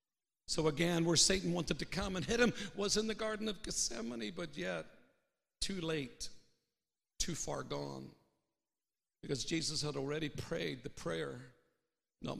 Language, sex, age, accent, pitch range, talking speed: English, male, 60-79, American, 150-195 Hz, 150 wpm